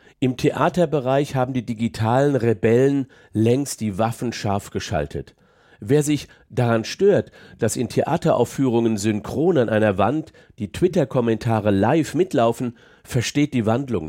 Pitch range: 110-145 Hz